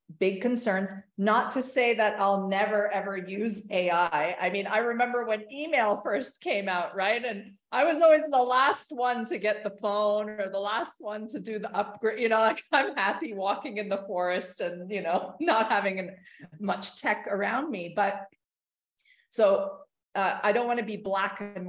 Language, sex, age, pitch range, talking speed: English, female, 40-59, 180-220 Hz, 190 wpm